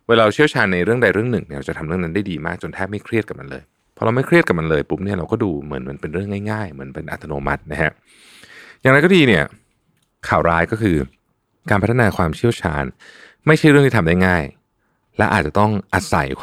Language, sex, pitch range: Thai, male, 80-110 Hz